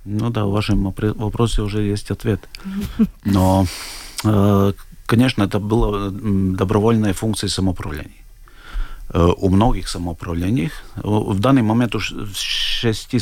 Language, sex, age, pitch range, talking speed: Russian, male, 50-69, 95-115 Hz, 105 wpm